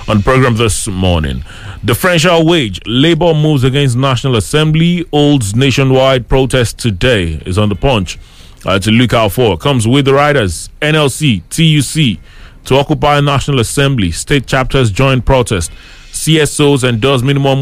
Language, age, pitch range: English, 30-49, 110-140 Hz